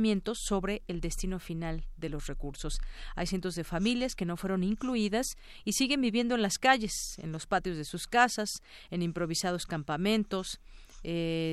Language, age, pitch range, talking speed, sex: Spanish, 40-59, 165-205 Hz, 160 wpm, female